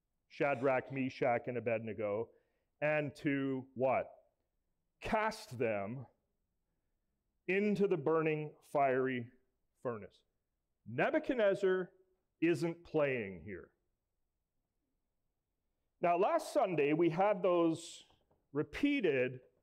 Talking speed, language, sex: 75 wpm, English, male